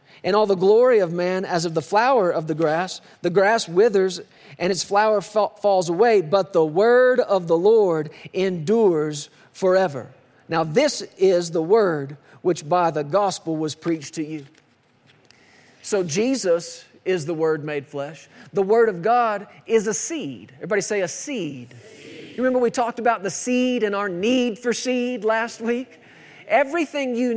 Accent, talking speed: American, 165 wpm